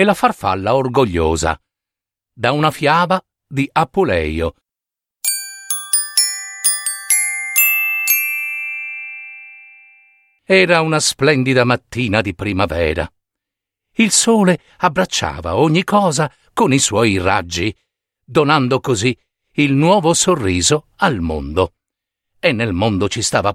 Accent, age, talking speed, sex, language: native, 50-69, 90 wpm, male, Italian